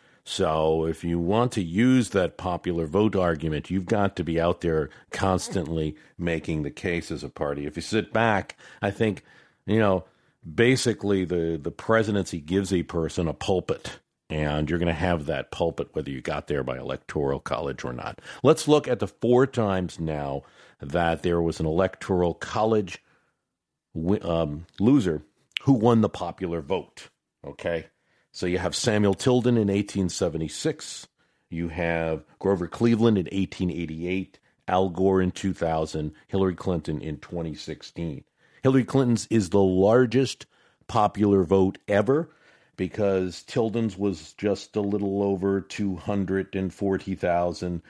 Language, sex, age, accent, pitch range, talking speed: English, male, 50-69, American, 85-105 Hz, 145 wpm